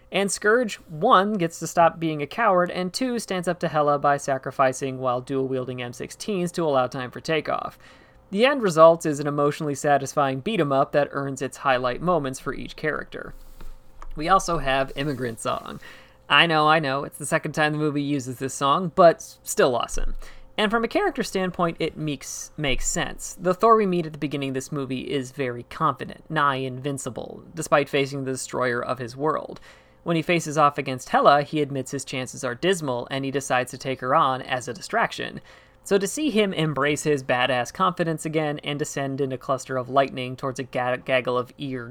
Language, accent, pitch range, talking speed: English, American, 130-165 Hz, 195 wpm